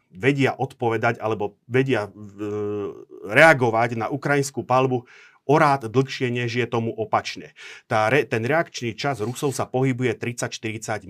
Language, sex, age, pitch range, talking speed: Slovak, male, 30-49, 110-135 Hz, 130 wpm